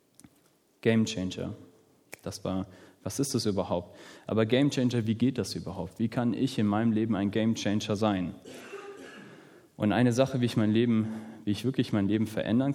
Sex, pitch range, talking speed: male, 105-135 Hz, 180 wpm